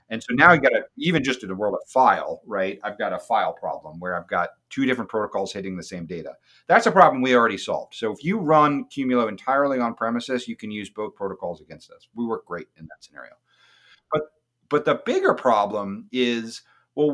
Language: English